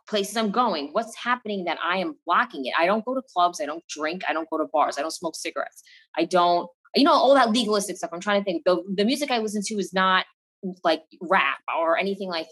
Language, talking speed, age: English, 250 wpm, 20-39